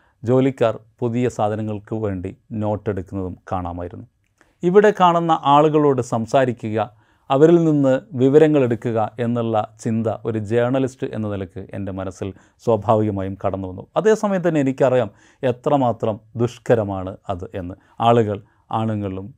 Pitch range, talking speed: 100-135 Hz, 100 wpm